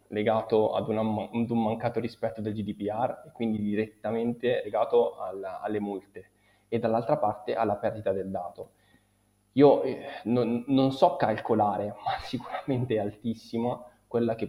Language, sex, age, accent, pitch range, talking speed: Italian, male, 20-39, native, 105-120 Hz, 135 wpm